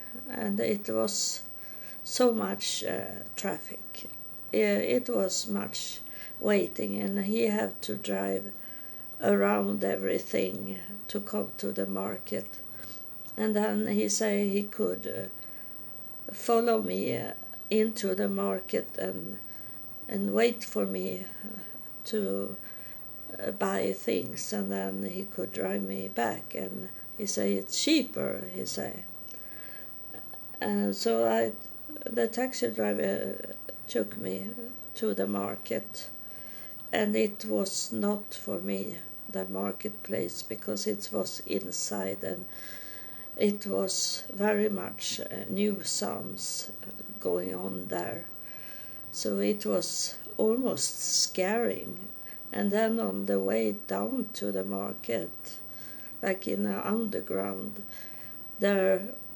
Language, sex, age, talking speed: English, female, 50-69, 110 wpm